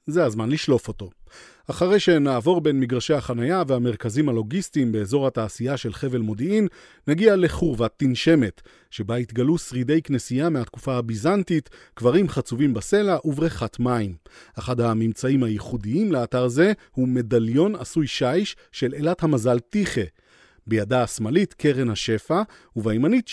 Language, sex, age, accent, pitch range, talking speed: Hebrew, male, 40-59, native, 120-165 Hz, 125 wpm